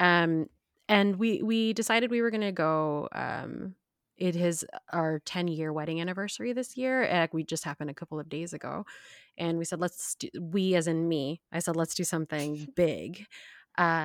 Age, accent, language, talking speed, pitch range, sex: 20-39, American, English, 185 wpm, 155-180 Hz, female